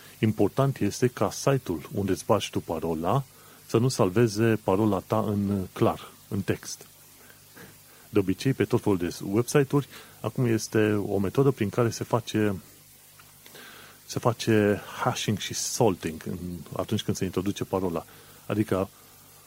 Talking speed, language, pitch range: 135 wpm, Romanian, 100-125 Hz